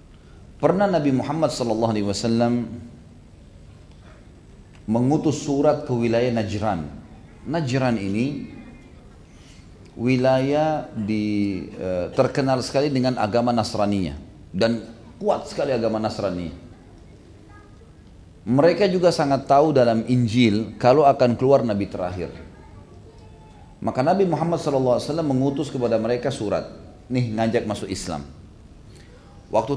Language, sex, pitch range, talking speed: Indonesian, male, 100-135 Hz, 105 wpm